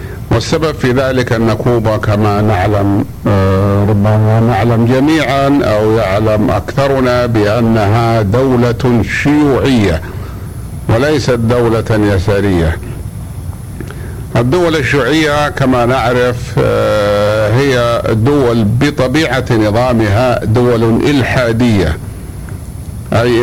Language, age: Arabic, 60-79